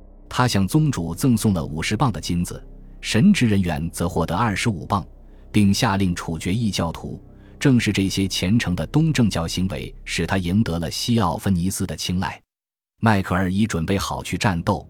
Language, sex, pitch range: Chinese, male, 85-110 Hz